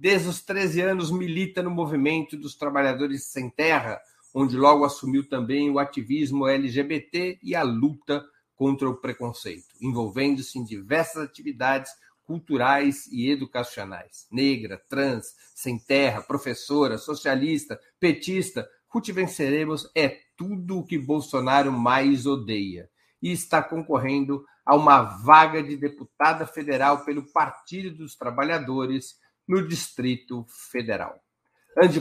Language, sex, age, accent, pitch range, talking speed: Portuguese, male, 50-69, Brazilian, 135-165 Hz, 120 wpm